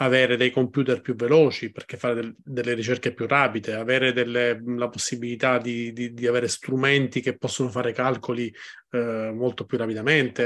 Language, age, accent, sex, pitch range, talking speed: Italian, 30-49, native, male, 120-145 Hz, 155 wpm